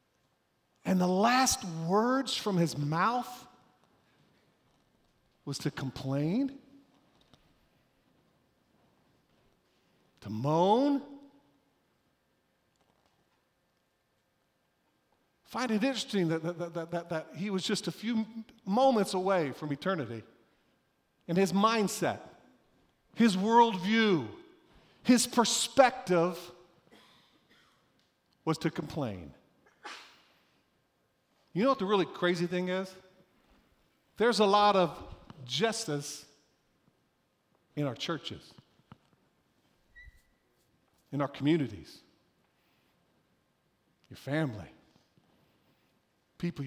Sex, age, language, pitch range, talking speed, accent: male, 50-69, English, 160-220 Hz, 80 wpm, American